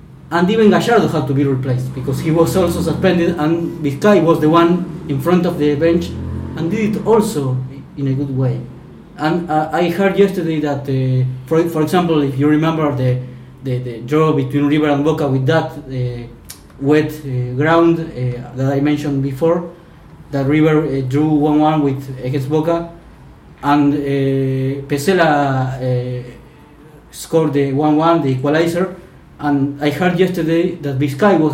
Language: English